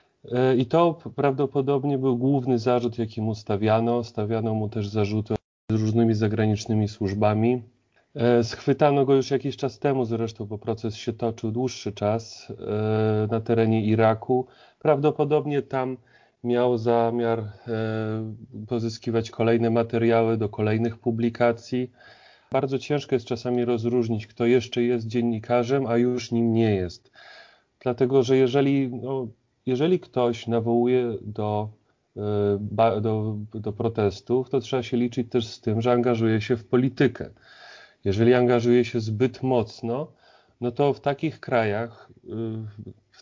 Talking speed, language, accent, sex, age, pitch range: 130 wpm, Polish, native, male, 30-49, 115-135 Hz